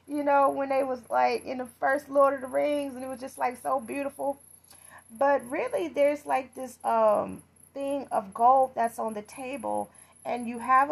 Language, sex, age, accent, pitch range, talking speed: English, female, 30-49, American, 210-255 Hz, 200 wpm